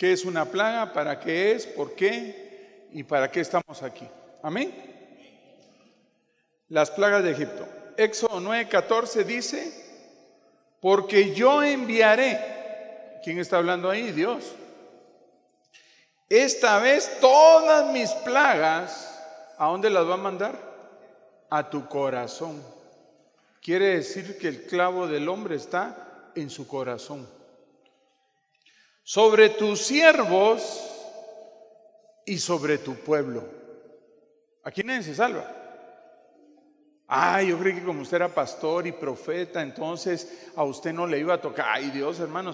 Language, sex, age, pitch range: Spanish, male, 50-69, 165-230 Hz